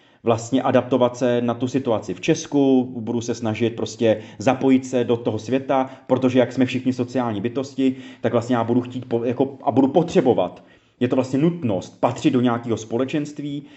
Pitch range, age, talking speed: 110-130 Hz, 30-49, 170 wpm